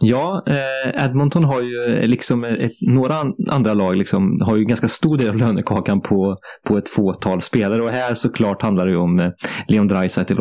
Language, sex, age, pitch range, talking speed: English, male, 20-39, 95-125 Hz, 175 wpm